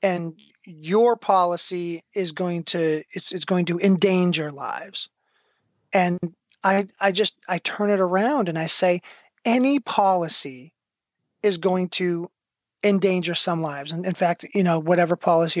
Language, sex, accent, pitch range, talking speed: English, male, American, 170-200 Hz, 145 wpm